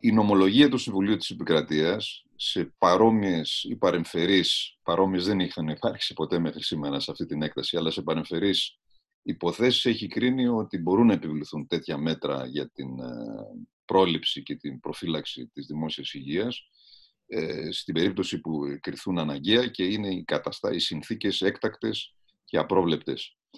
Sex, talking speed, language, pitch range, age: male, 130 wpm, Greek, 80-125 Hz, 40-59